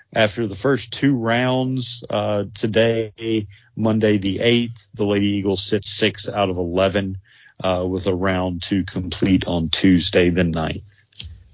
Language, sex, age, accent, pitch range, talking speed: English, male, 40-59, American, 95-110 Hz, 150 wpm